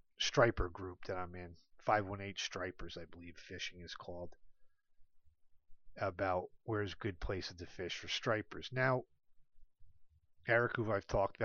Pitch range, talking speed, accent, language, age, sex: 90-120 Hz, 130 wpm, American, English, 40-59, male